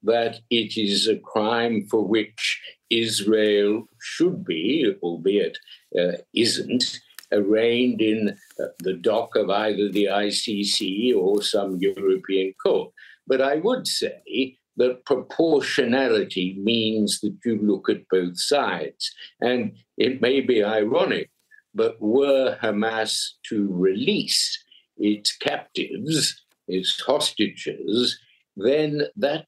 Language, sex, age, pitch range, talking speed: English, male, 60-79, 100-130 Hz, 110 wpm